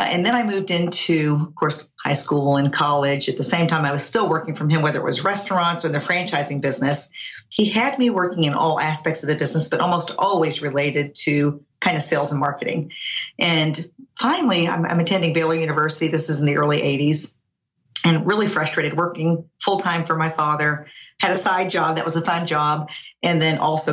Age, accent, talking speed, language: 40-59, American, 205 wpm, English